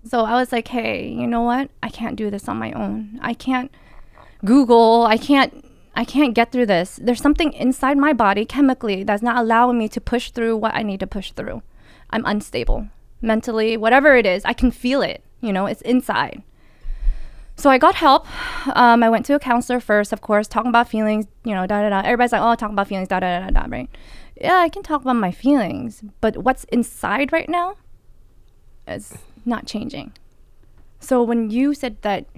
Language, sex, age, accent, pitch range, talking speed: English, female, 20-39, American, 205-250 Hz, 205 wpm